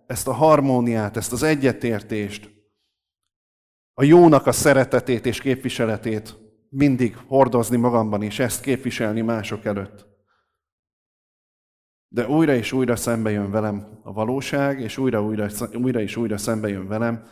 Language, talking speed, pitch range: Hungarian, 125 wpm, 105-130 Hz